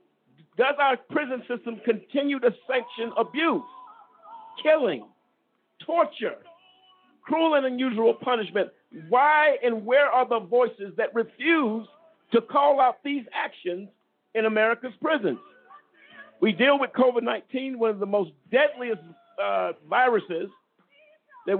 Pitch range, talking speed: 190-275 Hz, 115 wpm